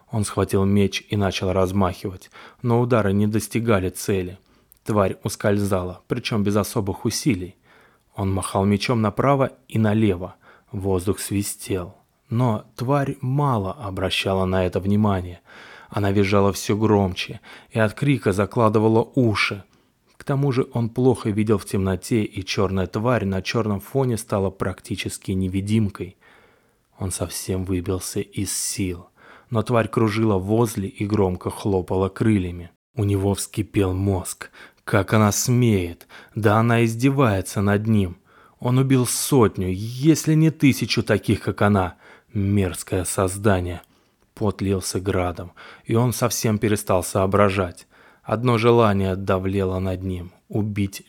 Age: 20-39